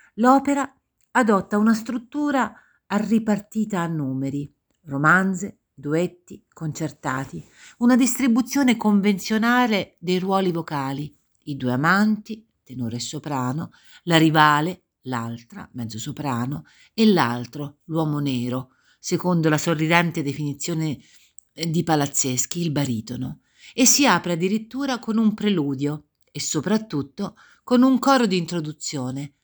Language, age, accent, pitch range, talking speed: Italian, 50-69, native, 145-205 Hz, 110 wpm